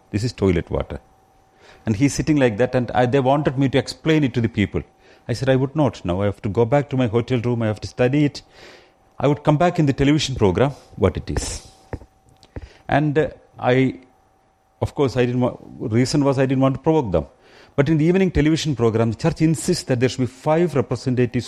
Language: English